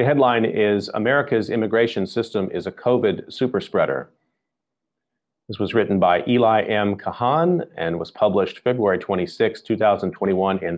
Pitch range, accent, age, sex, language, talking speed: 100-125 Hz, American, 40-59, male, English, 140 wpm